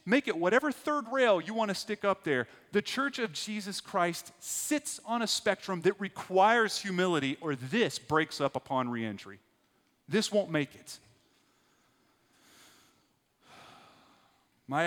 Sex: male